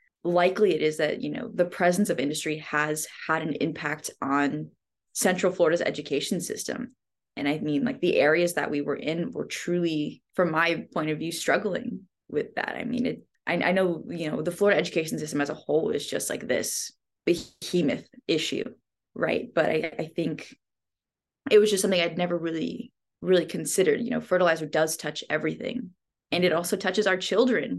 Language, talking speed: English, 185 wpm